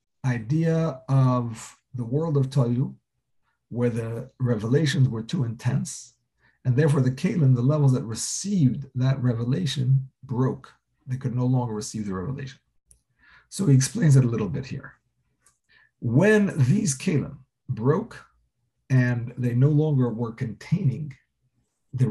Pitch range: 120-145 Hz